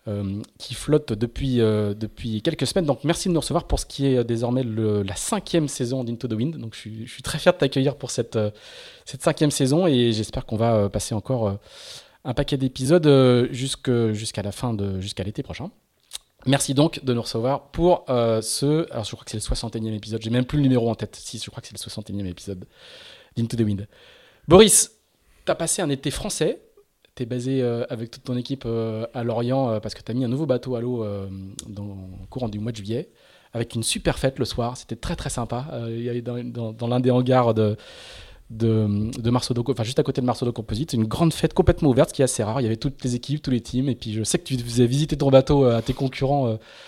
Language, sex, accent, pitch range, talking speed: French, male, French, 115-140 Hz, 245 wpm